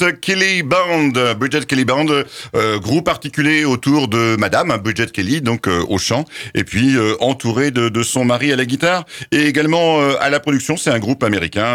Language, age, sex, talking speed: French, 50-69, male, 195 wpm